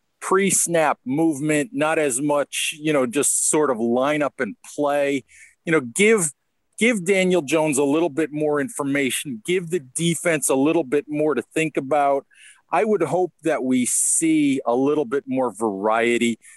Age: 40-59